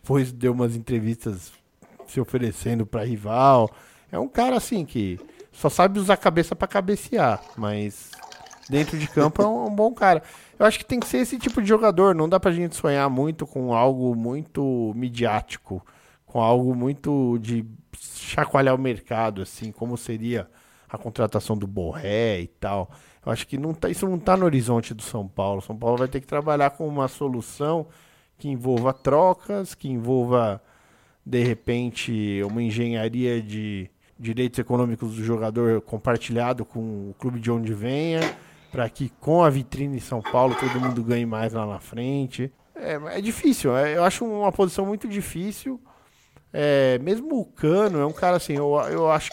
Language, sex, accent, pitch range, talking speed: Portuguese, male, Brazilian, 115-165 Hz, 175 wpm